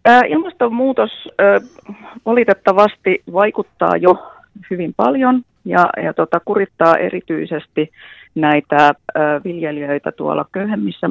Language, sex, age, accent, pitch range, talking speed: Finnish, female, 30-49, native, 150-195 Hz, 70 wpm